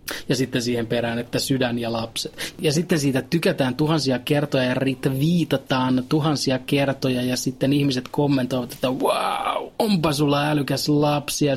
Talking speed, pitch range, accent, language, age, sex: 145 wpm, 125-155 Hz, native, Finnish, 30-49, male